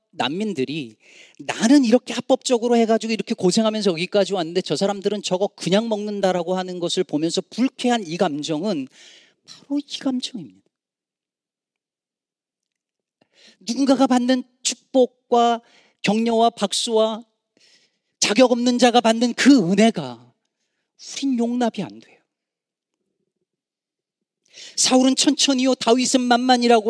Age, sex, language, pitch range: 40-59, male, Korean, 195-250 Hz